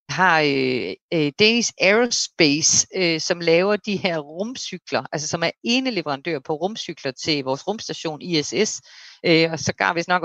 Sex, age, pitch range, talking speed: female, 30-49, 150-195 Hz, 165 wpm